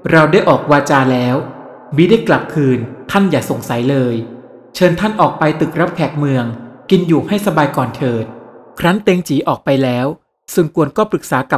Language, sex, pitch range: Thai, male, 135-175 Hz